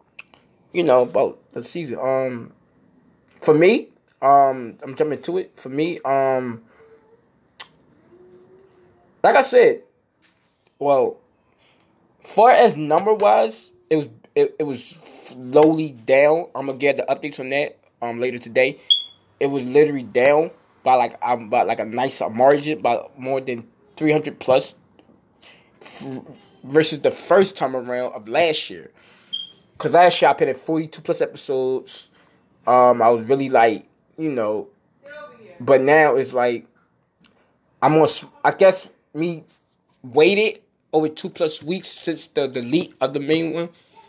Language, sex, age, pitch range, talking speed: English, male, 20-39, 130-175 Hz, 140 wpm